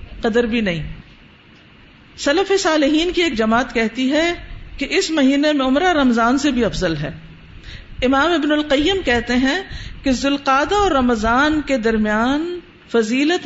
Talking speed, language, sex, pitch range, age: 145 wpm, Urdu, female, 220-290 Hz, 50-69